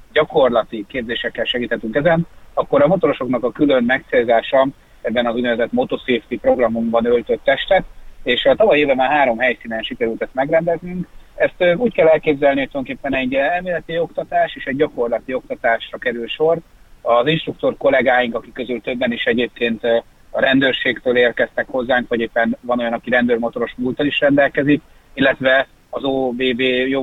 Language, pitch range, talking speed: Hungarian, 120-160 Hz, 150 wpm